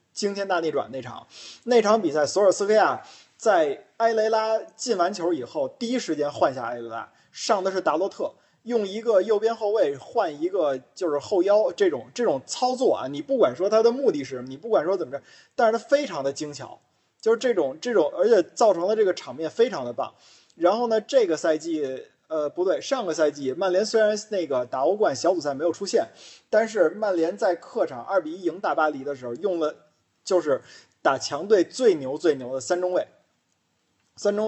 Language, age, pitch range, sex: Chinese, 20-39, 170-255 Hz, male